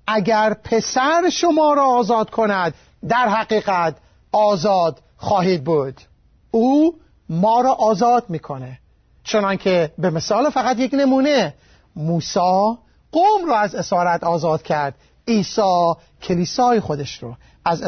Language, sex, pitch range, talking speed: Persian, male, 185-245 Hz, 115 wpm